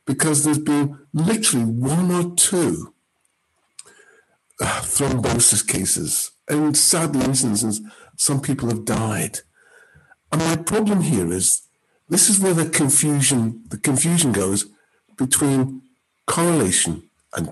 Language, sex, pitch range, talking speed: English, male, 135-185 Hz, 115 wpm